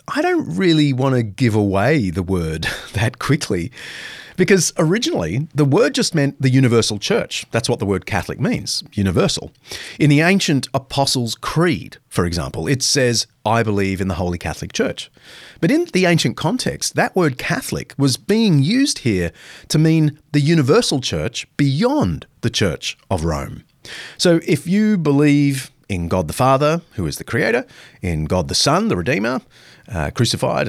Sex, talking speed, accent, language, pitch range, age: male, 165 wpm, Australian, English, 100-150 Hz, 30-49